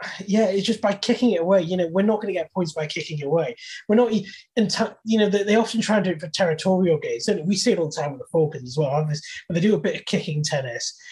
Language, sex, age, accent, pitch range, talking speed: English, male, 20-39, British, 165-210 Hz, 280 wpm